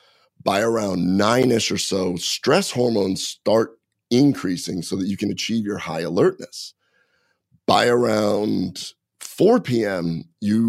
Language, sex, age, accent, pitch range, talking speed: English, male, 30-49, American, 90-115 Hz, 125 wpm